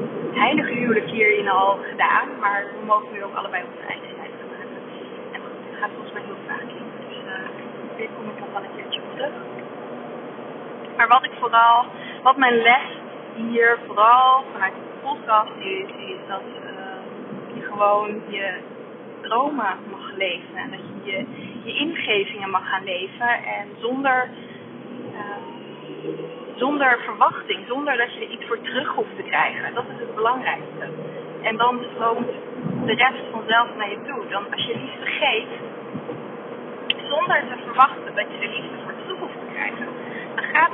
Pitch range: 220-260 Hz